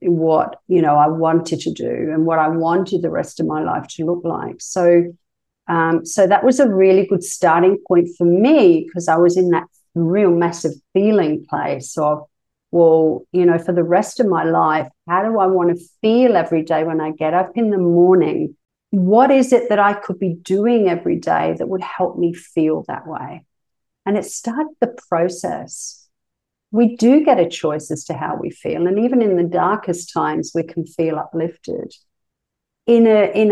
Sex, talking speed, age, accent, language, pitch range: female, 195 wpm, 50-69, Australian, English, 165-200 Hz